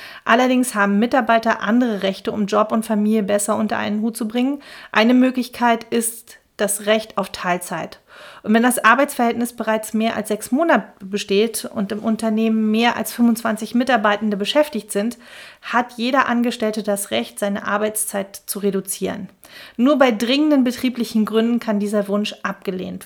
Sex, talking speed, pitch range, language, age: female, 155 wpm, 205-240 Hz, German, 40-59